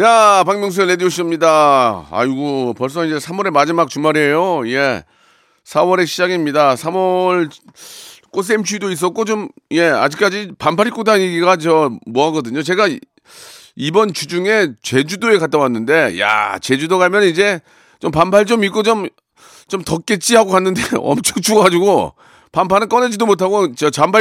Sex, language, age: male, Korean, 40-59